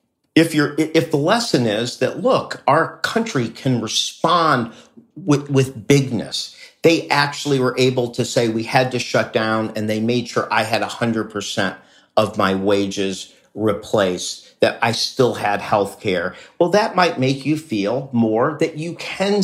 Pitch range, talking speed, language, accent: 105-140 Hz, 170 wpm, English, American